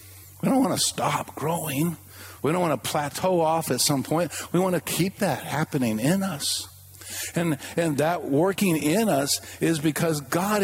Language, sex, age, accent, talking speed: English, male, 50-69, American, 180 wpm